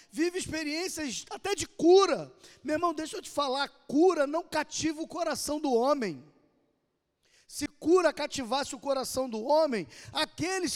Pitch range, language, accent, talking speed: 240-320 Hz, Portuguese, Brazilian, 145 wpm